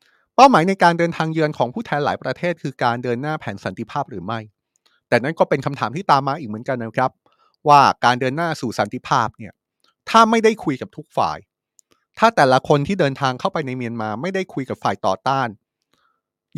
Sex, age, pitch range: male, 30-49, 110-155 Hz